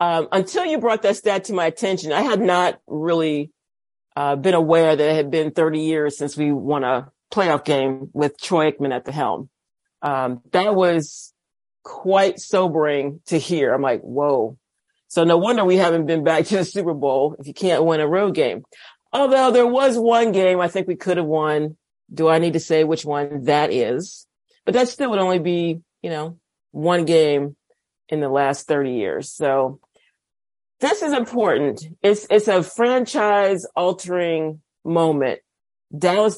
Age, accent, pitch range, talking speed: 40-59, American, 145-185 Hz, 175 wpm